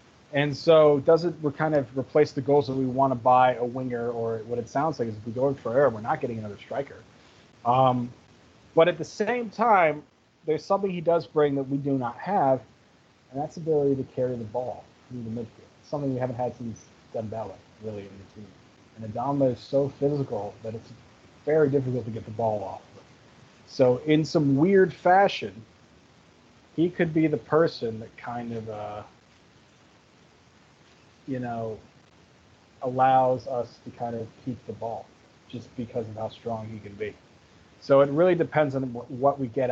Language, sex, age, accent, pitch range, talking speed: English, male, 30-49, American, 115-150 Hz, 190 wpm